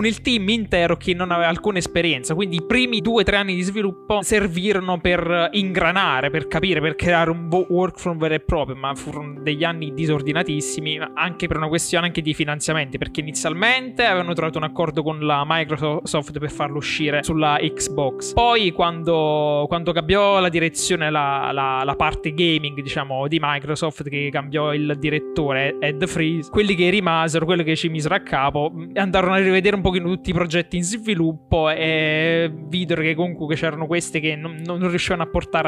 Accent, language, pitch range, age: native, Italian, 150-185 Hz, 20-39